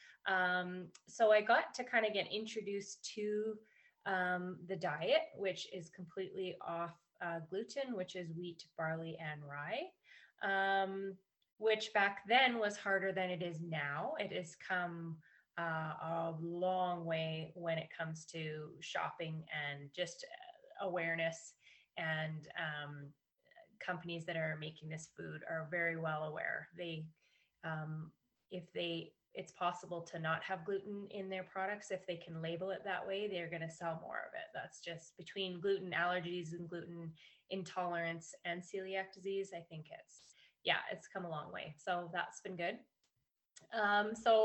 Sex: female